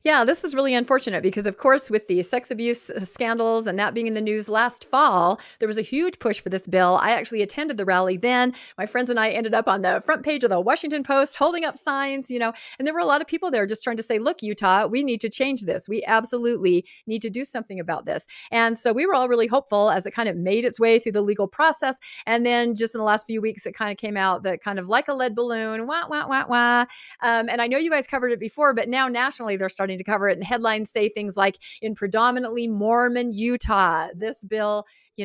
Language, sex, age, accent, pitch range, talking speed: English, female, 40-59, American, 200-255 Hz, 260 wpm